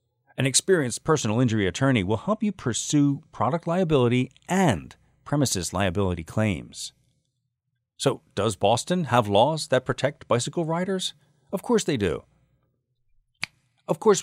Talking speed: 125 wpm